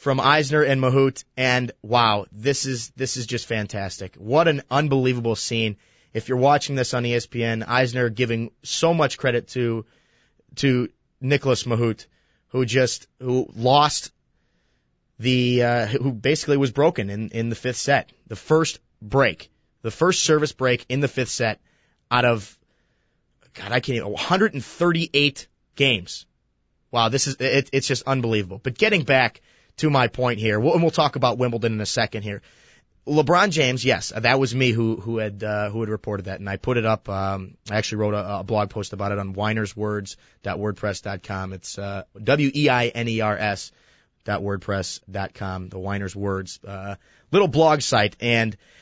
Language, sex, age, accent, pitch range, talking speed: English, male, 30-49, American, 105-135 Hz, 170 wpm